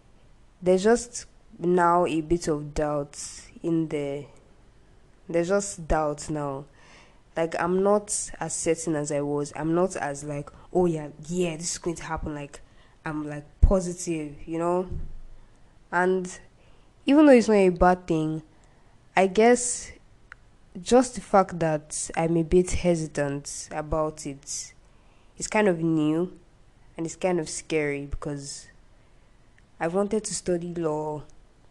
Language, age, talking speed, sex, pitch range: English, 10-29, 140 wpm, female, 145-175 Hz